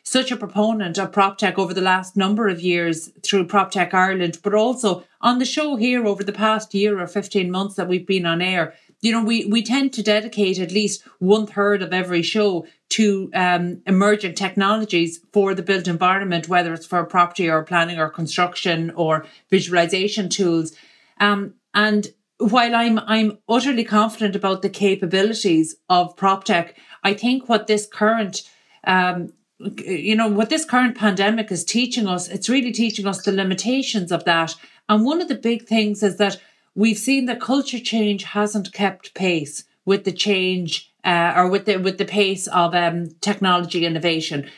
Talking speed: 175 wpm